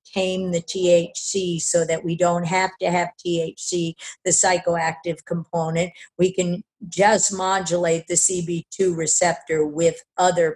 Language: English